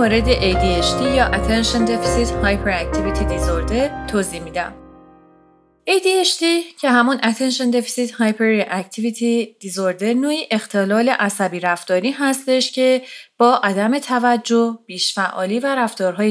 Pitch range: 200-275 Hz